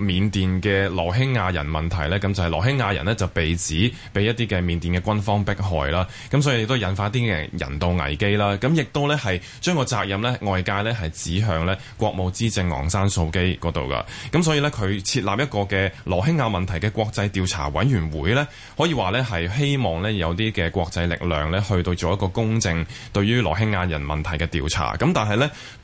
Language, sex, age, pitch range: Chinese, male, 20-39, 85-120 Hz